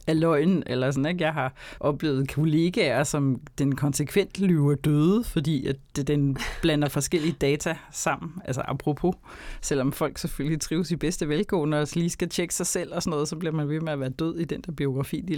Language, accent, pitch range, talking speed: Danish, native, 140-175 Hz, 205 wpm